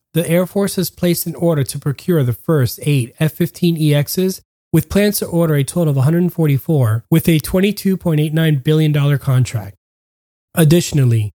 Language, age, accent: English, 20-39, American